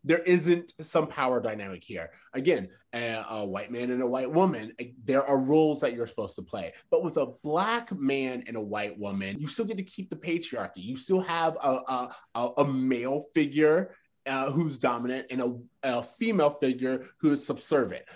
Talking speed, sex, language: 200 wpm, male, English